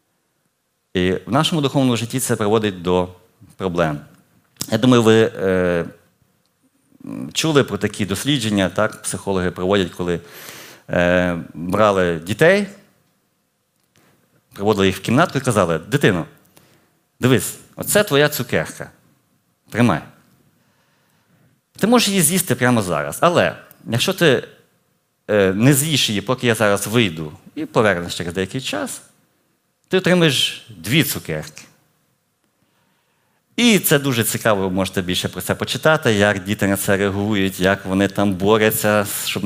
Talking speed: 125 wpm